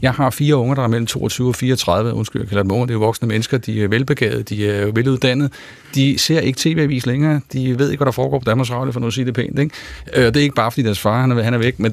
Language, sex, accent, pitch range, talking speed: Danish, male, native, 115-150 Hz, 290 wpm